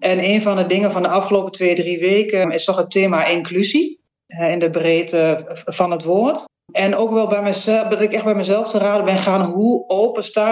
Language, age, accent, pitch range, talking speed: Dutch, 40-59, Dutch, 175-210 Hz, 220 wpm